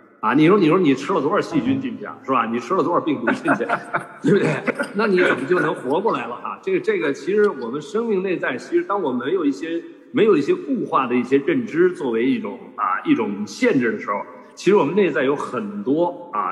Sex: male